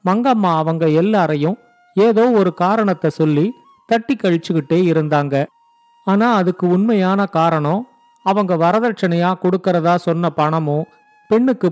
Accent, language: native, Tamil